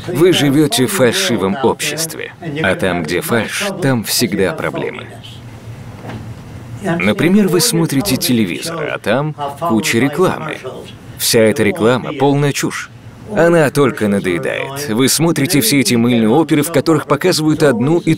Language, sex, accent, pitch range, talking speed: Russian, male, native, 120-175 Hz, 130 wpm